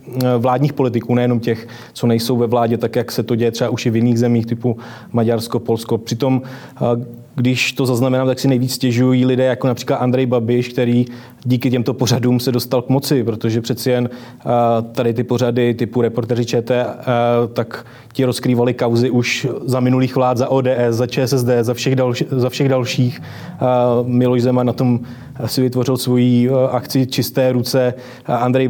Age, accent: 20-39, native